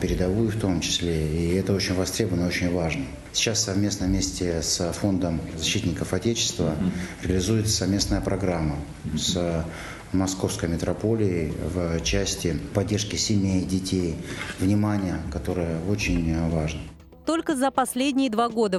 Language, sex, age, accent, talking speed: Russian, male, 30-49, native, 120 wpm